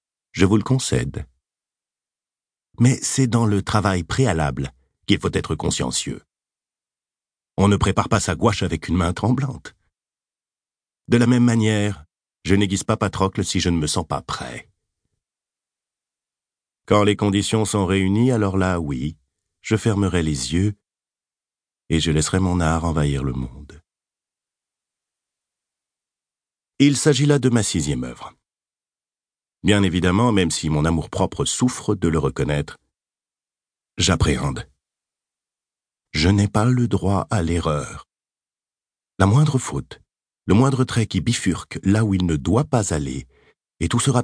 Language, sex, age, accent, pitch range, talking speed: French, male, 50-69, French, 85-115 Hz, 140 wpm